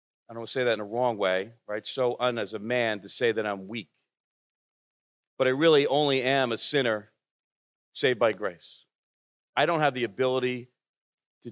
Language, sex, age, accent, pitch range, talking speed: English, male, 40-59, American, 110-140 Hz, 195 wpm